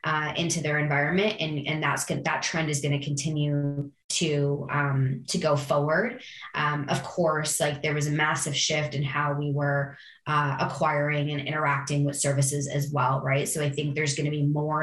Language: English